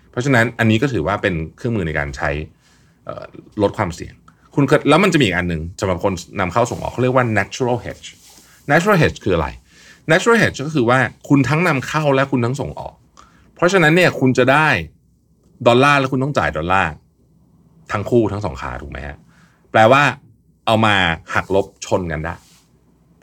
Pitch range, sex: 90-135 Hz, male